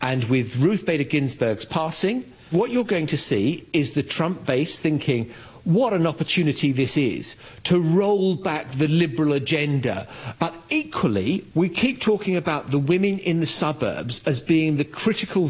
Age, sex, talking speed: 50-69, male, 165 wpm